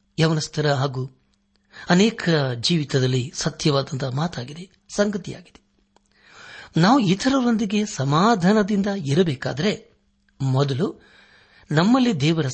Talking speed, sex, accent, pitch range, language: 65 wpm, male, native, 130-185 Hz, Kannada